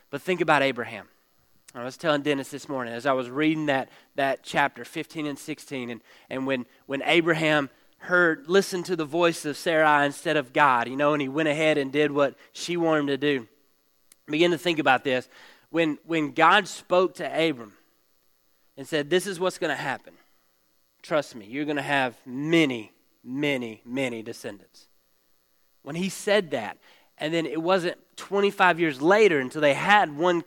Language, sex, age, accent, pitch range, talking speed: English, male, 30-49, American, 115-175 Hz, 185 wpm